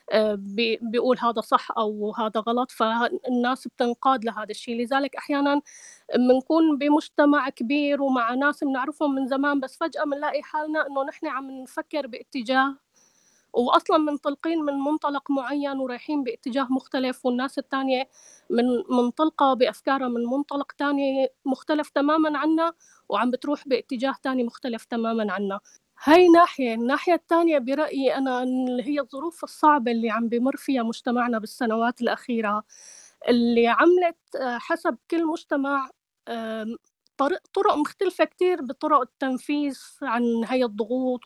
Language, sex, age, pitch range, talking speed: Arabic, female, 20-39, 245-295 Hz, 125 wpm